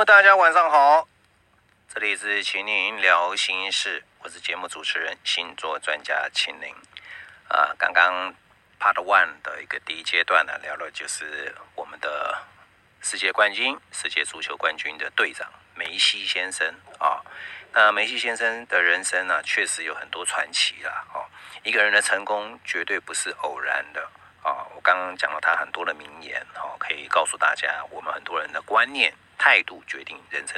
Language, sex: English, male